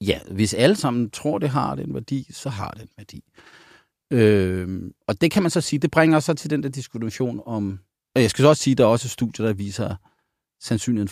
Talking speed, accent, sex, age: 240 wpm, native, male, 40-59